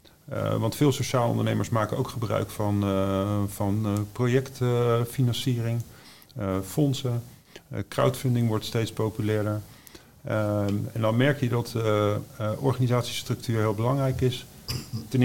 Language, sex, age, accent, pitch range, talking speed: Dutch, male, 50-69, Dutch, 105-130 Hz, 125 wpm